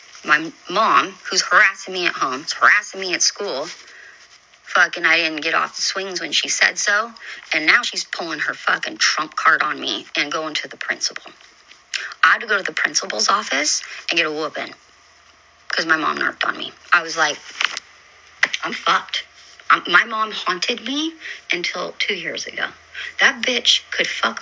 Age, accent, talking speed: 30-49, American, 175 wpm